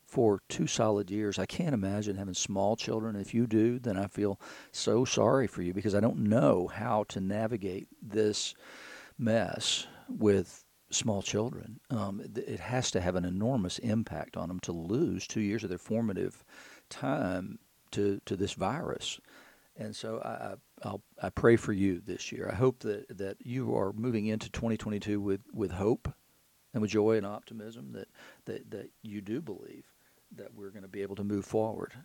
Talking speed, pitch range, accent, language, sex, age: 185 wpm, 100-110 Hz, American, English, male, 50-69